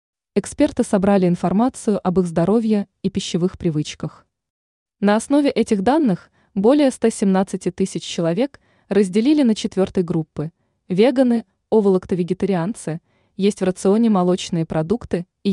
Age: 20-39